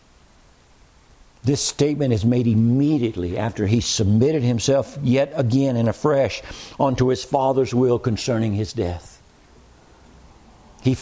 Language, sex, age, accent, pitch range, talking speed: English, male, 60-79, American, 135-195 Hz, 115 wpm